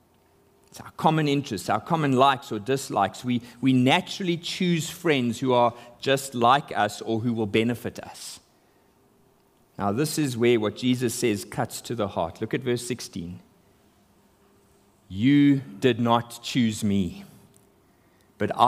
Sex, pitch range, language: male, 120-185 Hz, English